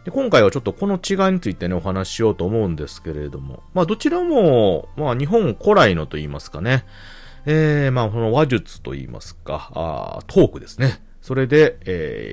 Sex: male